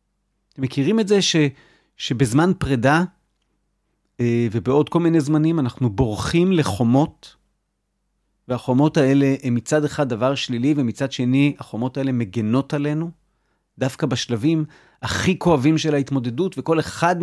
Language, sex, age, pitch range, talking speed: Hebrew, male, 40-59, 130-170 Hz, 120 wpm